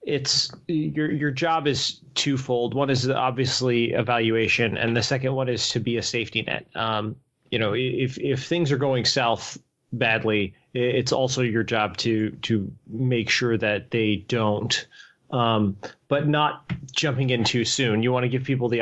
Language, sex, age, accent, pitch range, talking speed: English, male, 30-49, American, 110-135 Hz, 170 wpm